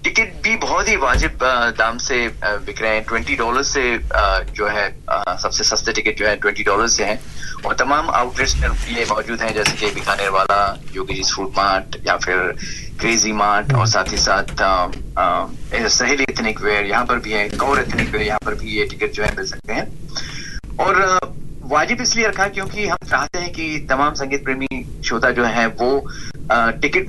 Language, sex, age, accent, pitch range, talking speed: Hindi, male, 30-49, native, 115-145 Hz, 185 wpm